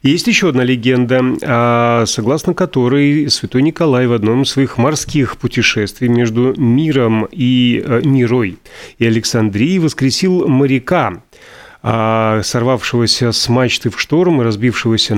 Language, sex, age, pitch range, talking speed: Russian, male, 30-49, 115-140 Hz, 120 wpm